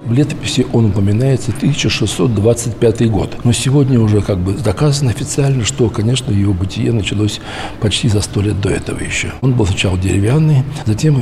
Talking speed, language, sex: 160 wpm, Russian, male